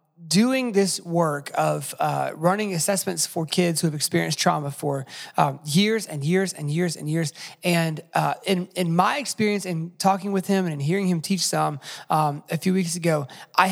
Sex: male